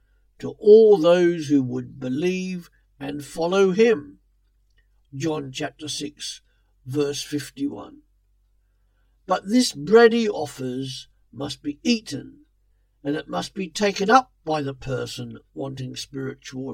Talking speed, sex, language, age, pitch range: 120 wpm, male, English, 60-79, 130-205 Hz